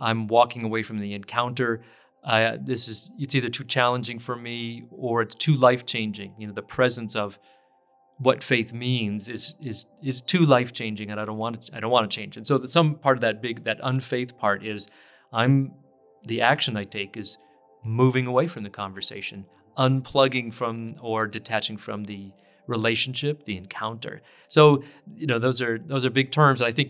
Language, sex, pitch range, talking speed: English, male, 105-130 Hz, 190 wpm